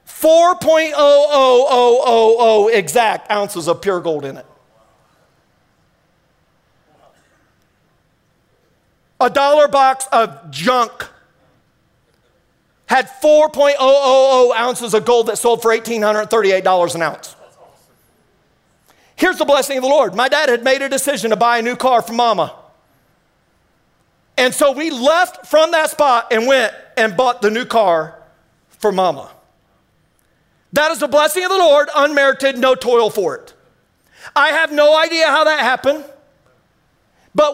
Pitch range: 230-300 Hz